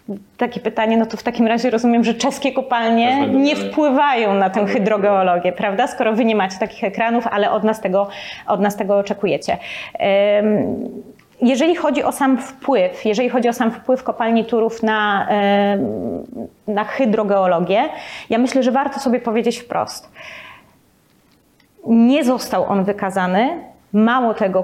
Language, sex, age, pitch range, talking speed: Polish, female, 30-49, 200-245 Hz, 145 wpm